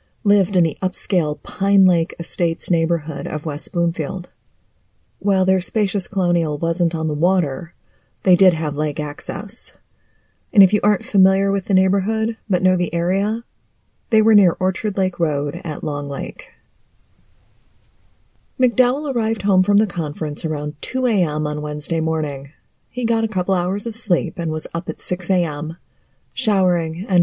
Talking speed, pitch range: 160 wpm, 150-195 Hz